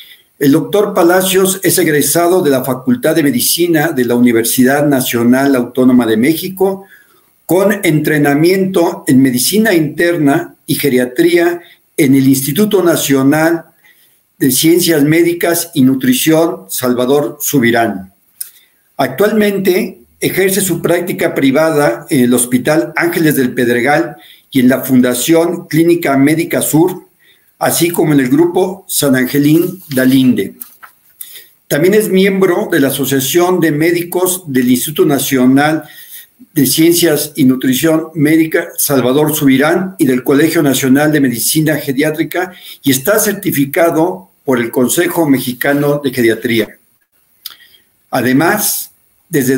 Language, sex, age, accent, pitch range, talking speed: Spanish, male, 50-69, Mexican, 135-175 Hz, 115 wpm